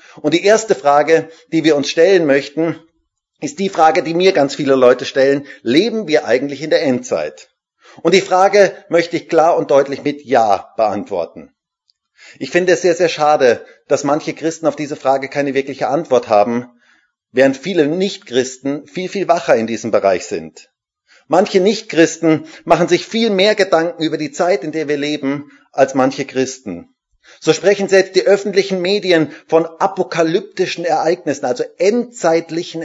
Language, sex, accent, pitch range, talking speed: German, male, German, 140-185 Hz, 165 wpm